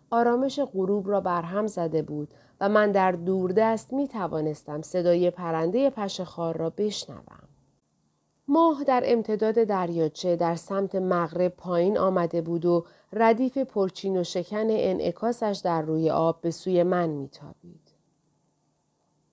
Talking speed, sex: 125 wpm, female